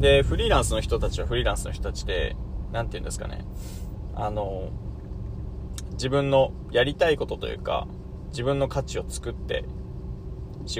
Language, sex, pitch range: Japanese, male, 90-145 Hz